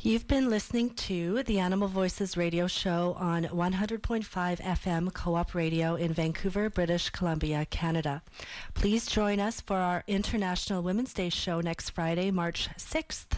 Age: 40-59